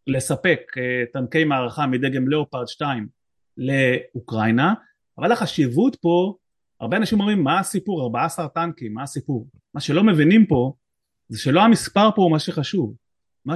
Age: 30-49